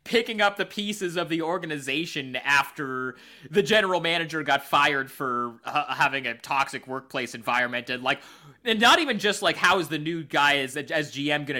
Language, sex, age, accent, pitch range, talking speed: English, male, 30-49, American, 135-180 Hz, 185 wpm